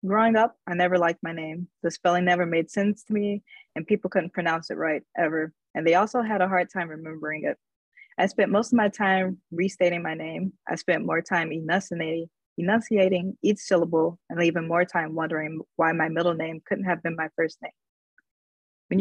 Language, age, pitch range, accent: English, 20-39, 160-195 Hz, American